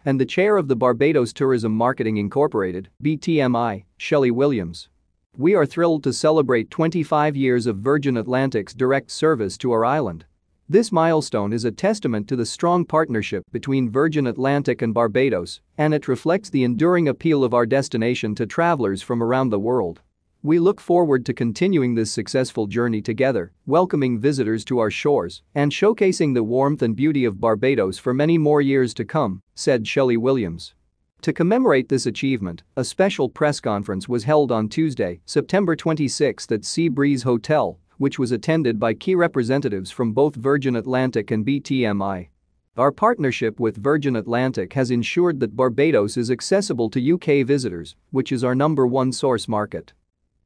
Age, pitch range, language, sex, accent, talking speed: 40-59, 115-150 Hz, English, male, American, 165 wpm